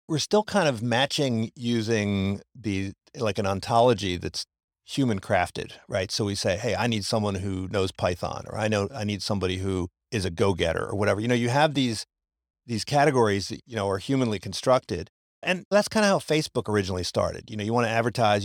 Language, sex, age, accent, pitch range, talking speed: English, male, 50-69, American, 100-125 Hz, 205 wpm